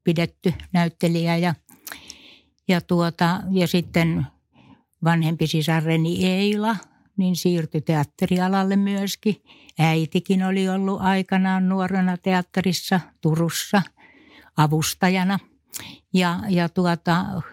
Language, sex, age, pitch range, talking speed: Finnish, female, 60-79, 160-185 Hz, 85 wpm